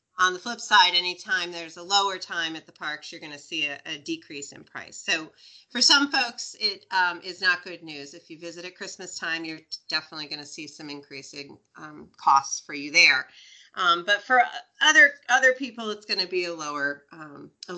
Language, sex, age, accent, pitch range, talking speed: English, female, 40-59, American, 165-200 Hz, 215 wpm